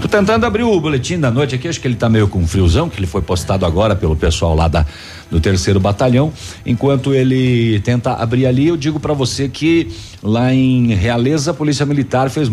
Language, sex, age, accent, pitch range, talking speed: Portuguese, male, 50-69, Brazilian, 95-130 Hz, 210 wpm